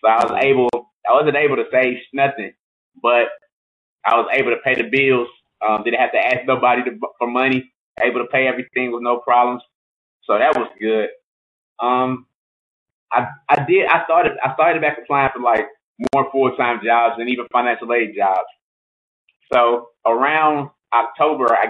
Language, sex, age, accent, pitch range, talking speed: English, male, 20-39, American, 120-140 Hz, 175 wpm